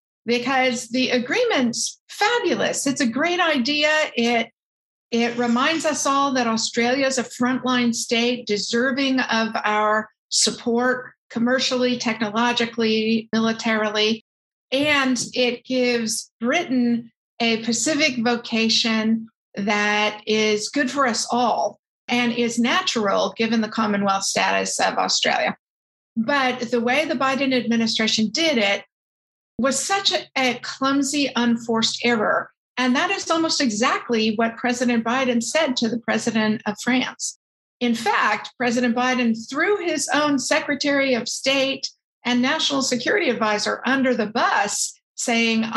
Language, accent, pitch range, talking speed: English, American, 225-270 Hz, 125 wpm